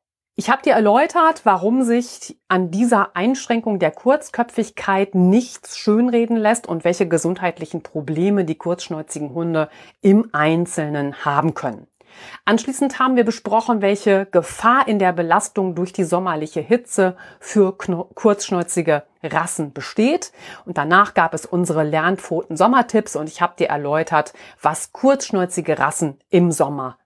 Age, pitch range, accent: 40-59, 160-220 Hz, German